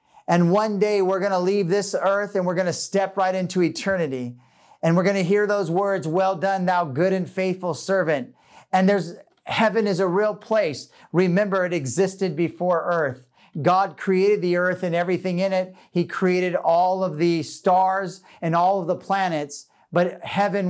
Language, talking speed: English, 185 wpm